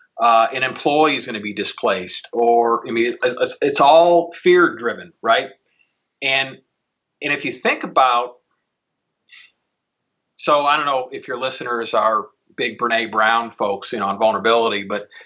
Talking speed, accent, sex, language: 155 wpm, American, male, English